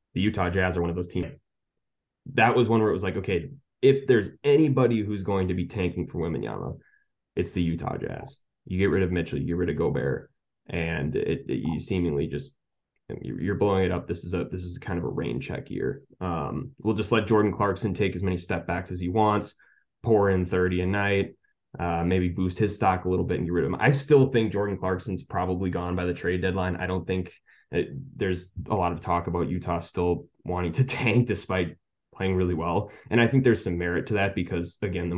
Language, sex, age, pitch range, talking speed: English, male, 20-39, 85-105 Hz, 230 wpm